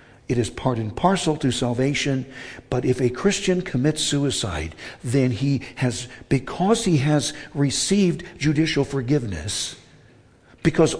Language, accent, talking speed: English, American, 125 wpm